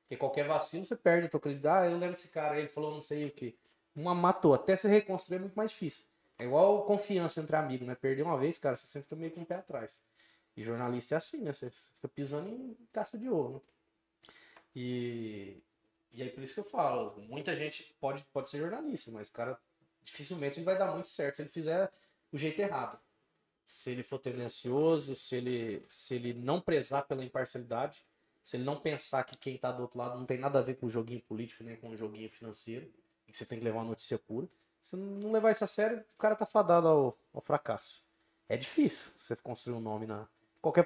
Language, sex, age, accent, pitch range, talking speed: Portuguese, male, 20-39, Brazilian, 125-185 Hz, 225 wpm